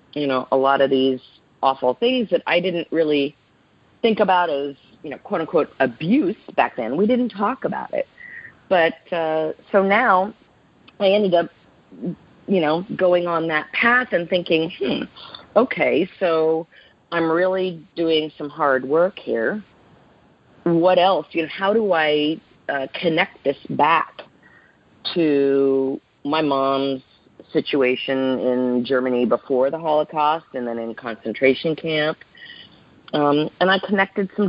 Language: English